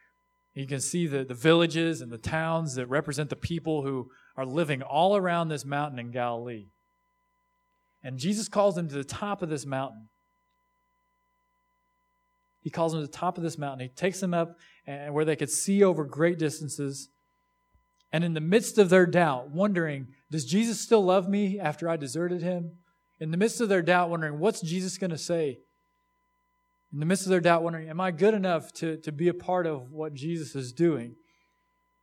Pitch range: 130-200 Hz